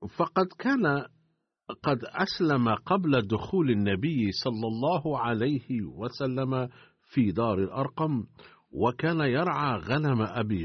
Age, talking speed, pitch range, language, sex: 50-69, 100 wpm, 110-145 Hz, Arabic, male